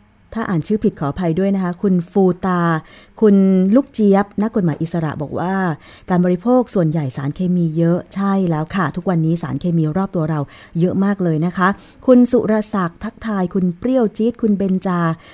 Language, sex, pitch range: Thai, female, 165-200 Hz